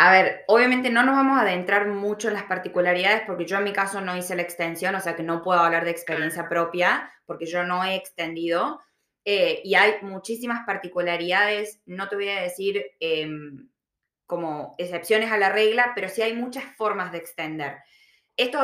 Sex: female